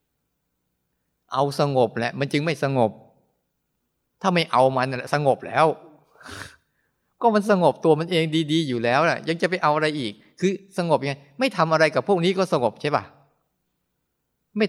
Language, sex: Thai, male